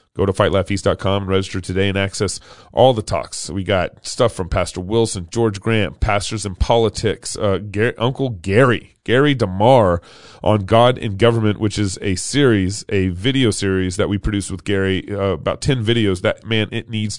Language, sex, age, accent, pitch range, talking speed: English, male, 30-49, American, 100-120 Hz, 180 wpm